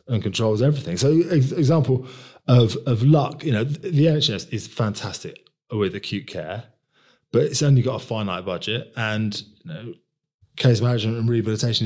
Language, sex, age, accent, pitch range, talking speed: English, male, 20-39, British, 100-130 Hz, 155 wpm